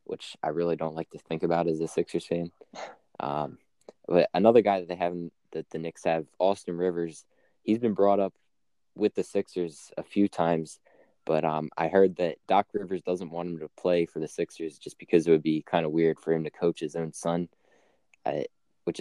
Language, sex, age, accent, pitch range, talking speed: English, male, 20-39, American, 80-90 Hz, 210 wpm